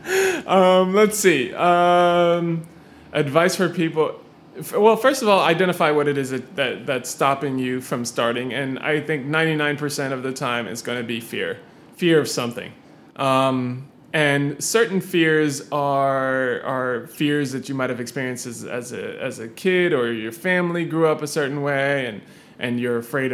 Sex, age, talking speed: male, 20-39, 170 wpm